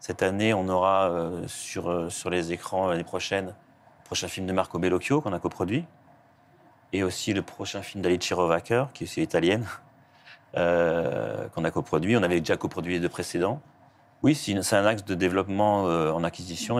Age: 40-59